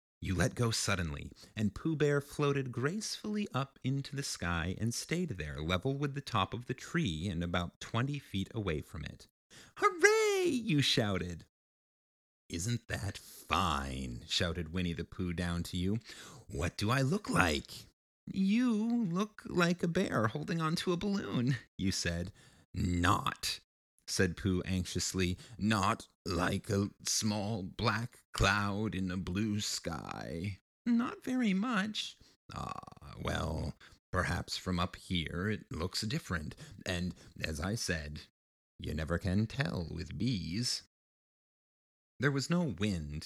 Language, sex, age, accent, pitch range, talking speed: English, male, 30-49, American, 85-135 Hz, 140 wpm